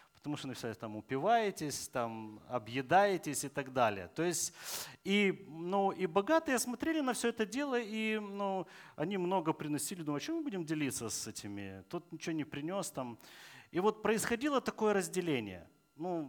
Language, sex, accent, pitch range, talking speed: Russian, male, native, 145-200 Hz, 170 wpm